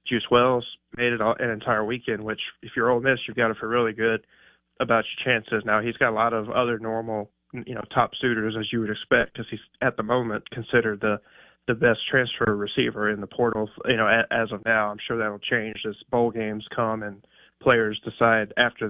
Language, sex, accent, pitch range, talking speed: English, male, American, 110-120 Hz, 220 wpm